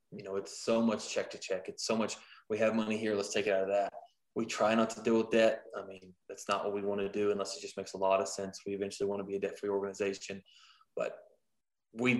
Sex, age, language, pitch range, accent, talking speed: male, 20-39, English, 100-125 Hz, American, 275 wpm